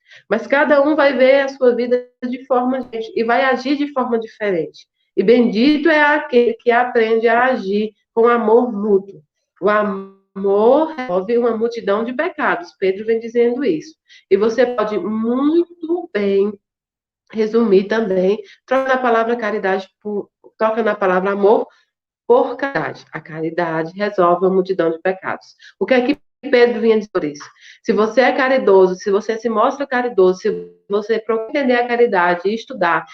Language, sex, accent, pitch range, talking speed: Portuguese, female, Brazilian, 200-255 Hz, 165 wpm